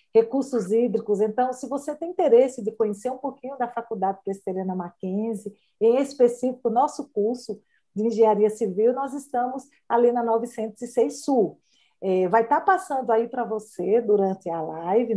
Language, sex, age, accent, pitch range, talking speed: Portuguese, female, 50-69, Brazilian, 215-275 Hz, 155 wpm